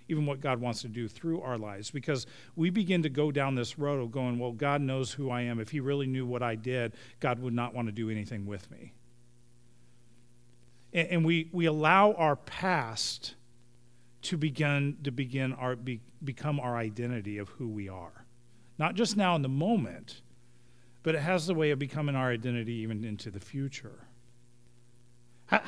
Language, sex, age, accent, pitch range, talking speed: English, male, 40-59, American, 120-160 Hz, 190 wpm